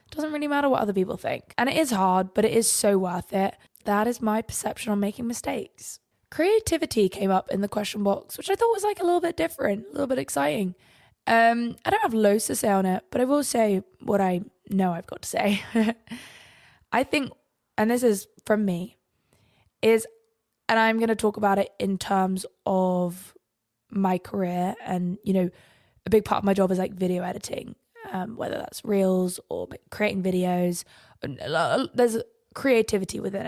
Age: 20-39